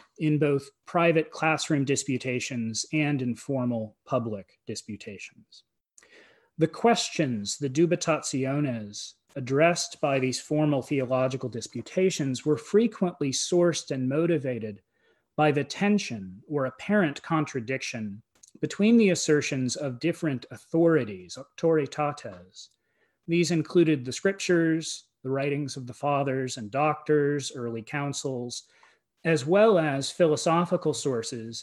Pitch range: 125-165 Hz